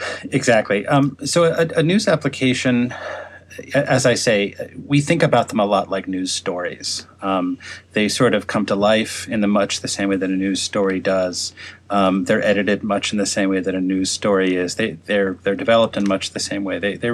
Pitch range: 95-120 Hz